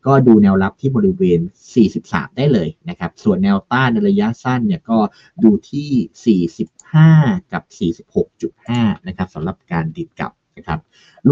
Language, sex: Thai, male